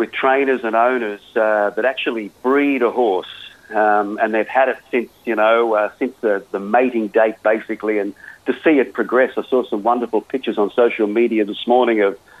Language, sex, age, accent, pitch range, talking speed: English, male, 50-69, Australian, 110-135 Hz, 200 wpm